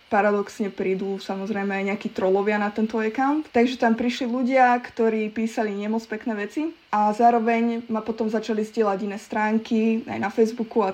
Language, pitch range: Slovak, 205-235 Hz